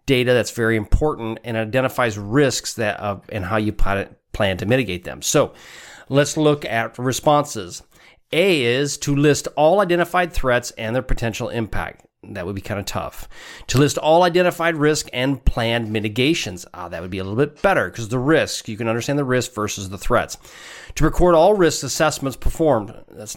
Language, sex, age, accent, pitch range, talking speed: English, male, 40-59, American, 110-145 Hz, 185 wpm